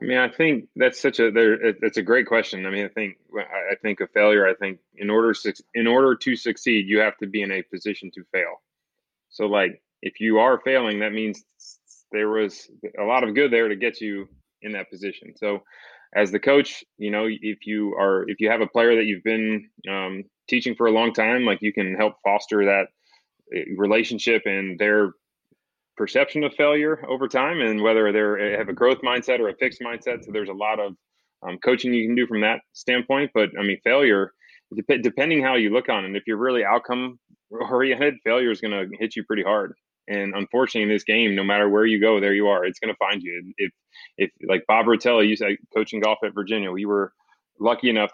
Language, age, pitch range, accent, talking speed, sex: English, 20-39, 100-115 Hz, American, 220 wpm, male